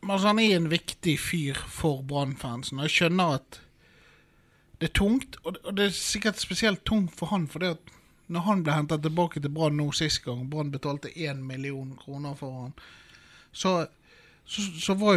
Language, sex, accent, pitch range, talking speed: English, male, Swedish, 135-170 Hz, 180 wpm